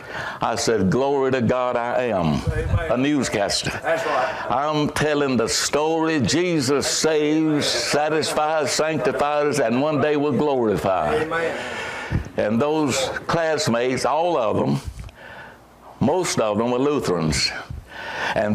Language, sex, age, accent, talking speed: English, male, 60-79, American, 110 wpm